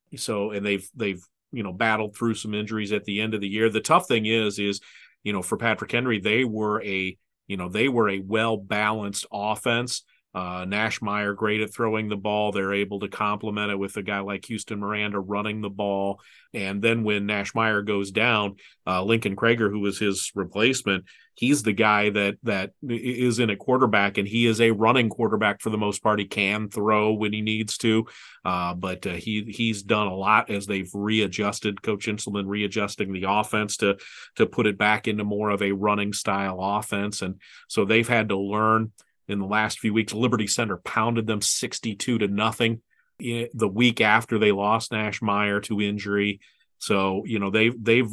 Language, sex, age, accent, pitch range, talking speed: English, male, 40-59, American, 100-110 Hz, 200 wpm